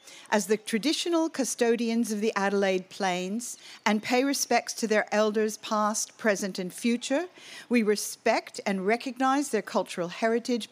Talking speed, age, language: 140 wpm, 50-69, English